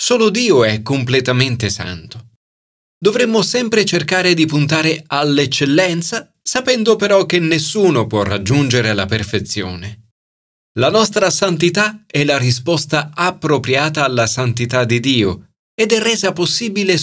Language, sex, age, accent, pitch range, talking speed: Italian, male, 40-59, native, 110-165 Hz, 120 wpm